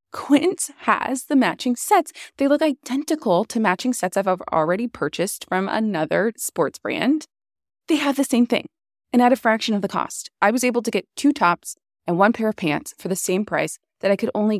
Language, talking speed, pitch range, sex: English, 205 wpm, 185-275 Hz, female